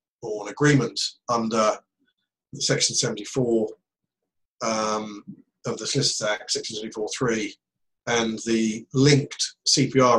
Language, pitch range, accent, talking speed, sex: English, 115-155 Hz, British, 100 wpm, male